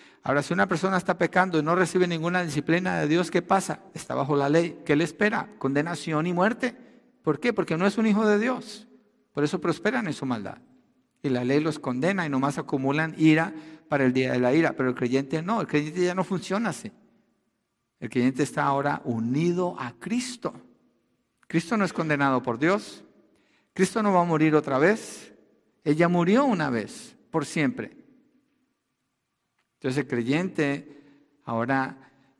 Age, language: 50-69, Spanish